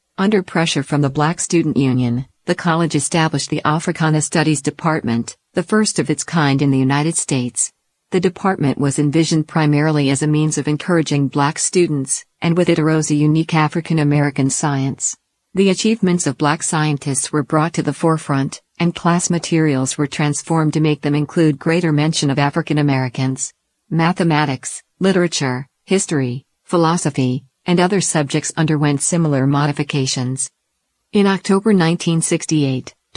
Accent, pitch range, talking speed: American, 145-170 Hz, 145 wpm